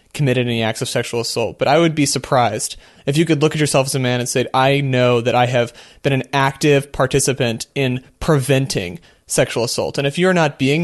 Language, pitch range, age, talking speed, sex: English, 125-155 Hz, 30-49, 220 wpm, male